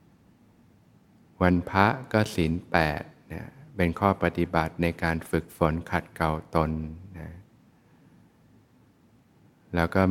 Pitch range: 85-95 Hz